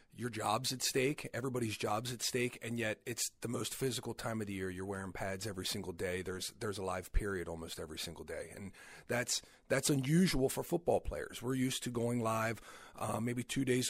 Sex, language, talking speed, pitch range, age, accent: male, English, 210 wpm, 100-125 Hz, 40-59, American